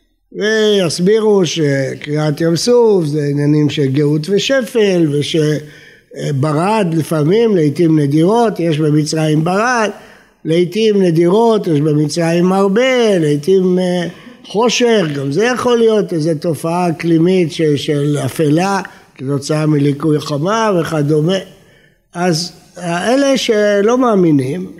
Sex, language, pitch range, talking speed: male, Hebrew, 155-225 Hz, 95 wpm